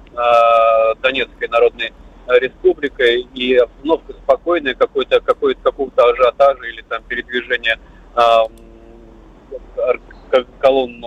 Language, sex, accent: Russian, male, native